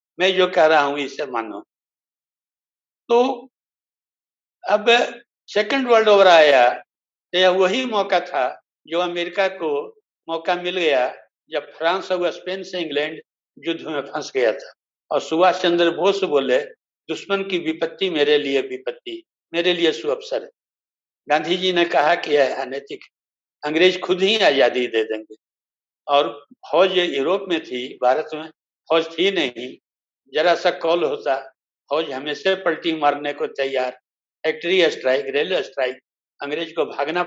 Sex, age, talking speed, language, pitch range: male, 60-79, 105 wpm, English, 140-195 Hz